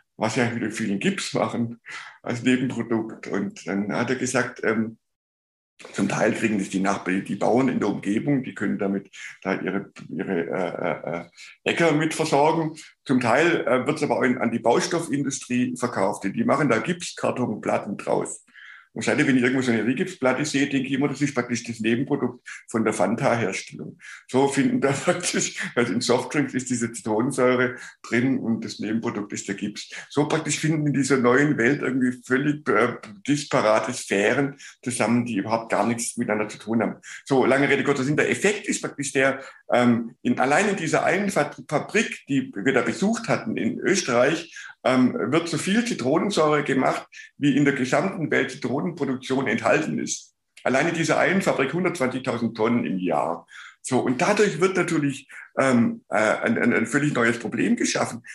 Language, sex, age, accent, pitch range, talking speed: German, male, 50-69, German, 115-150 Hz, 175 wpm